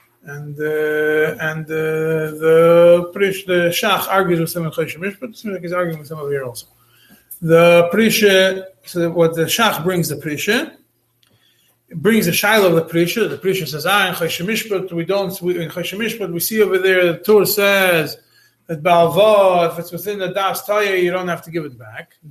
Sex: male